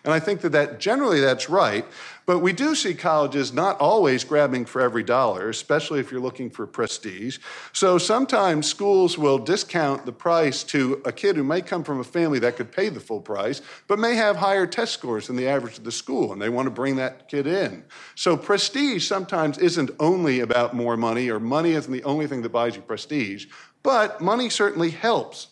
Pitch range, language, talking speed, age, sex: 125-170 Hz, English, 205 wpm, 50-69, male